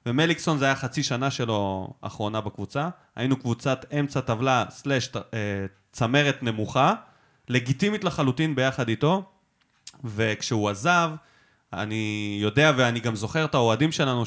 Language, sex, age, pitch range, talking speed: Hebrew, male, 20-39, 115-160 Hz, 120 wpm